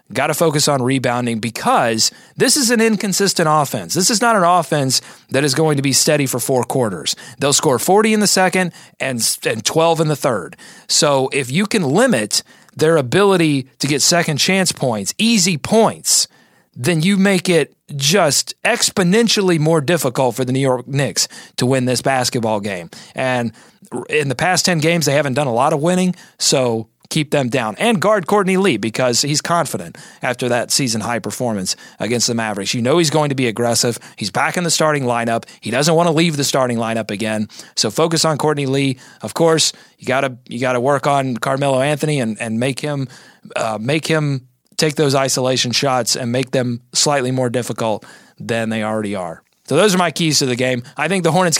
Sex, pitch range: male, 125-165 Hz